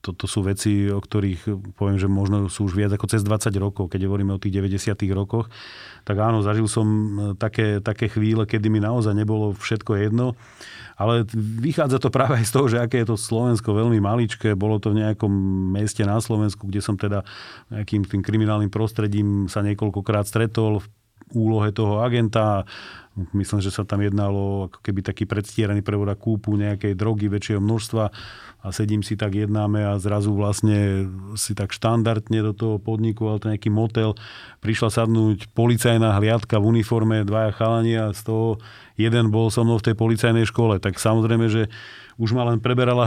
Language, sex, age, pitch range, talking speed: Slovak, male, 40-59, 105-120 Hz, 180 wpm